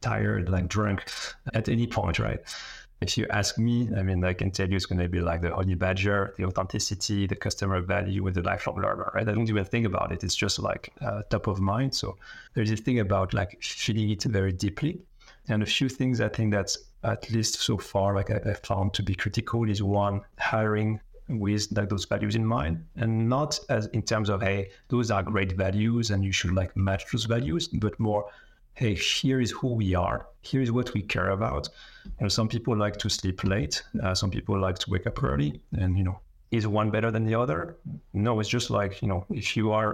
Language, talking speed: English, 225 wpm